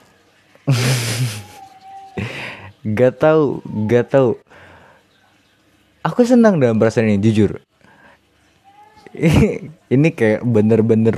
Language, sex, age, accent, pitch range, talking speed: Indonesian, male, 20-39, native, 100-135 Hz, 70 wpm